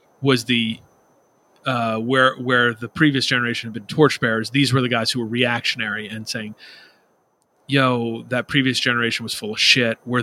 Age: 30-49